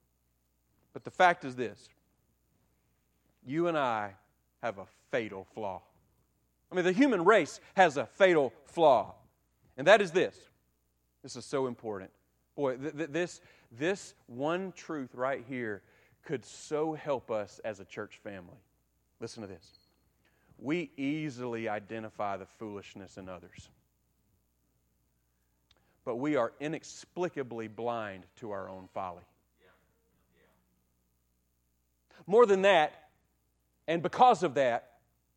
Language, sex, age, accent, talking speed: English, male, 40-59, American, 120 wpm